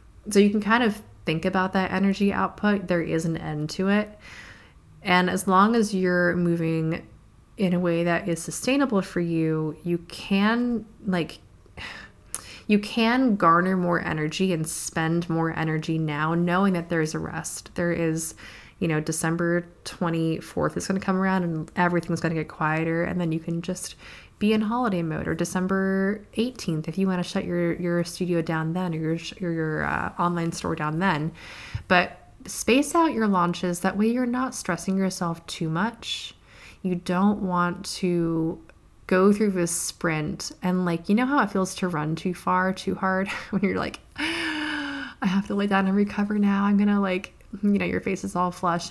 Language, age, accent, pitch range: English, 20-39, American, 165-195 Hz